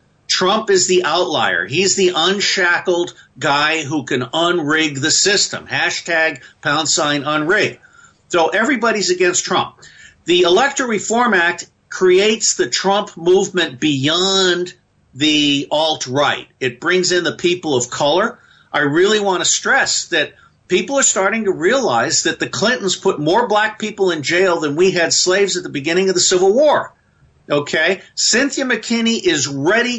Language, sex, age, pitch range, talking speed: English, male, 50-69, 150-205 Hz, 150 wpm